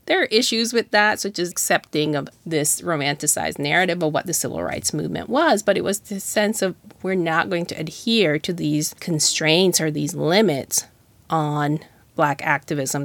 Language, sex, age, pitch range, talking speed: English, female, 30-49, 150-195 Hz, 180 wpm